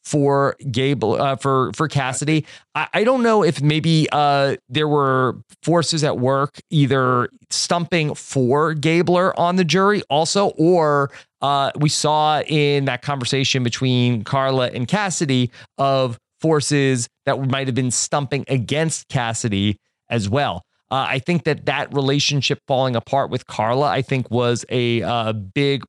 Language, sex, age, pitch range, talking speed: English, male, 30-49, 125-150 Hz, 150 wpm